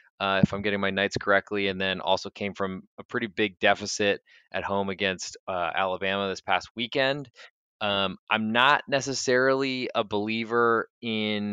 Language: English